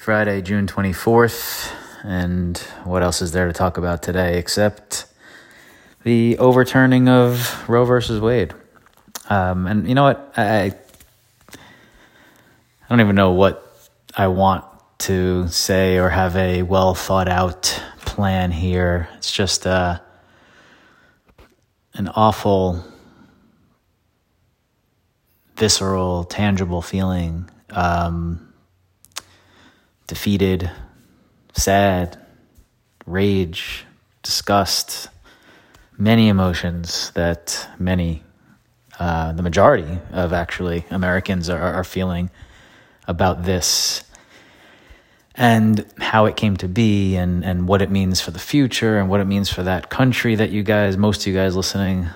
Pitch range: 90-105 Hz